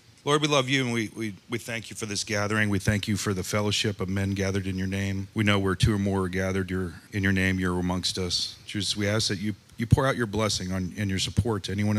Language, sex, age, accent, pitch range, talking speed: English, male, 40-59, American, 95-115 Hz, 280 wpm